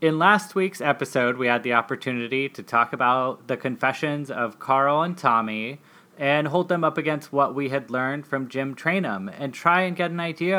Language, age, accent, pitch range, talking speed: English, 20-39, American, 125-160 Hz, 200 wpm